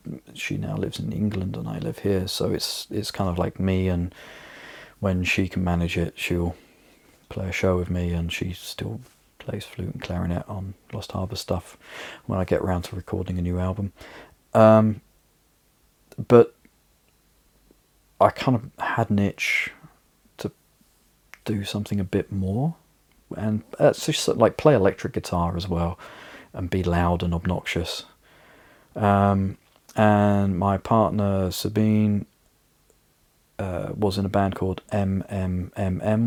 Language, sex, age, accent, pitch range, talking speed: English, male, 40-59, British, 90-105 Hz, 145 wpm